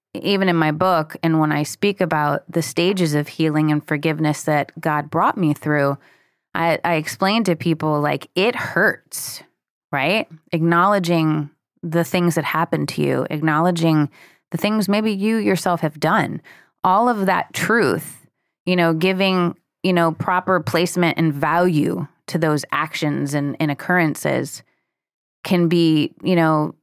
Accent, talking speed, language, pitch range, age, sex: American, 150 wpm, English, 150-180 Hz, 20-39, female